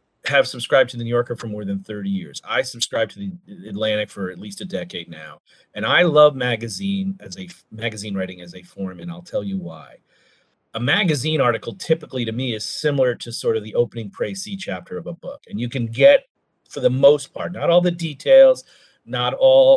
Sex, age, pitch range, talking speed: male, 40-59, 105-175 Hz, 215 wpm